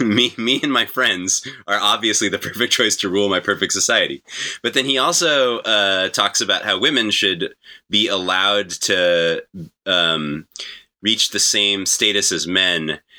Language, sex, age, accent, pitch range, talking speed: English, male, 30-49, American, 90-115 Hz, 160 wpm